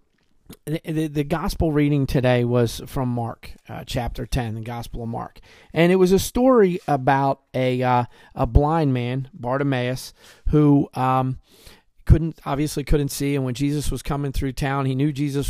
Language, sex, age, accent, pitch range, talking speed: English, male, 30-49, American, 125-145 Hz, 165 wpm